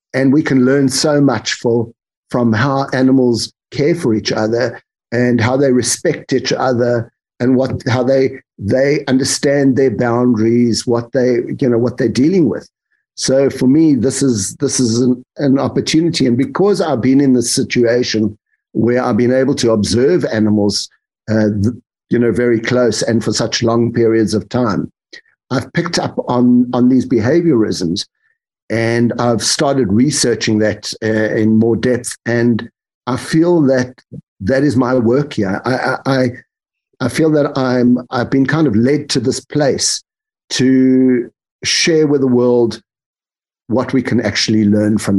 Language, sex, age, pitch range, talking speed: English, male, 50-69, 110-135 Hz, 165 wpm